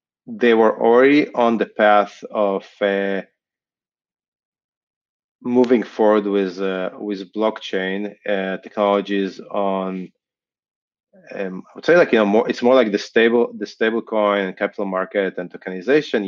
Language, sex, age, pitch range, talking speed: English, male, 30-49, 100-125 Hz, 135 wpm